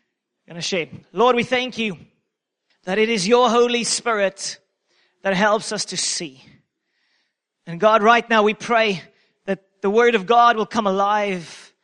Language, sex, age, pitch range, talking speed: English, male, 30-49, 200-250 Hz, 155 wpm